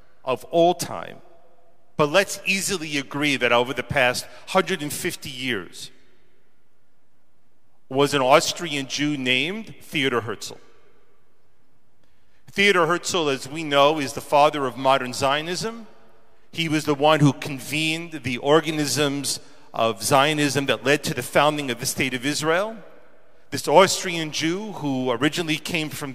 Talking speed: 135 wpm